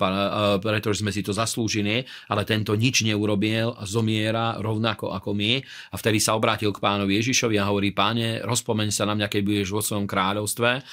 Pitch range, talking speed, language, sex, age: 100-110 Hz, 175 wpm, Slovak, male, 40-59